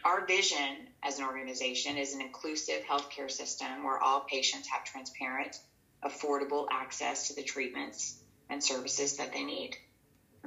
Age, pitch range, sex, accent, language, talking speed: 30-49, 135-150 Hz, female, American, English, 150 wpm